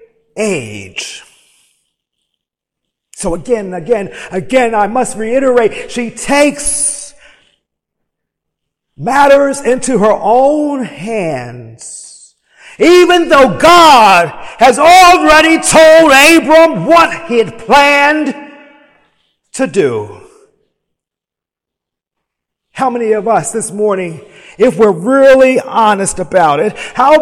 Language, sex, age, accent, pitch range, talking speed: English, male, 50-69, American, 230-315 Hz, 90 wpm